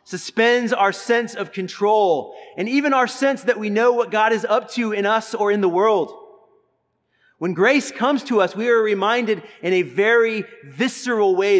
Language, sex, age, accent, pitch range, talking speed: English, male, 30-49, American, 185-245 Hz, 185 wpm